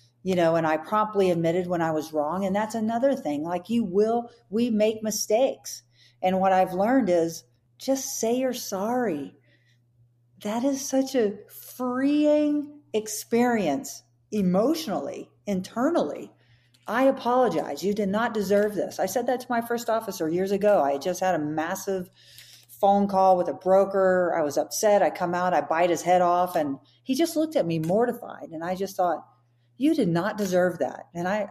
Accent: American